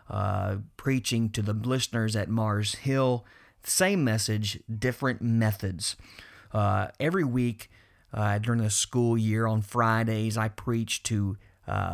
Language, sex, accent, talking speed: English, male, American, 130 wpm